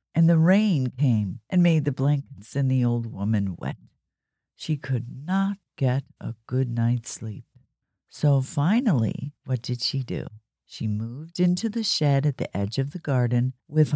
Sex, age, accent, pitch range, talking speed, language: female, 50-69, American, 120-170 Hz, 170 wpm, English